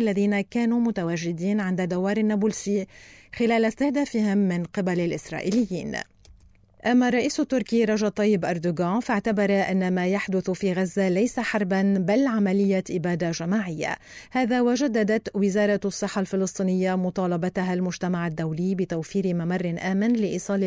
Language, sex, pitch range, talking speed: Arabic, female, 180-220 Hz, 120 wpm